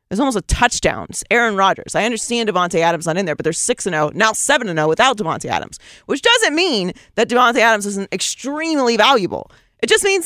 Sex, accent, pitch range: female, American, 180-280 Hz